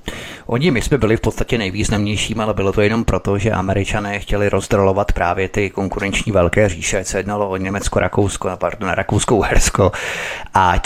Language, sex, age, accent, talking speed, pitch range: Czech, male, 30-49, native, 175 wpm, 95-110 Hz